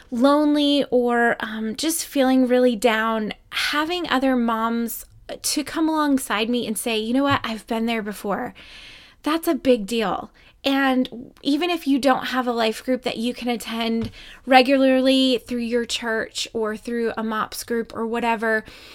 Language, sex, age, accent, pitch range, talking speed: English, female, 20-39, American, 230-270 Hz, 160 wpm